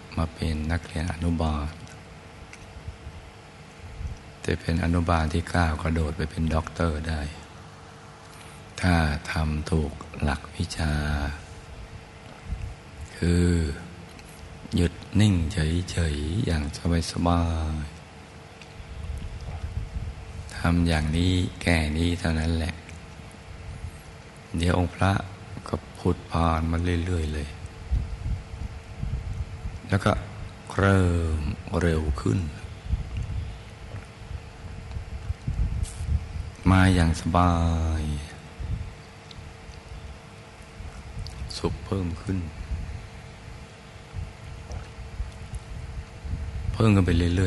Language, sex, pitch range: Thai, male, 80-95 Hz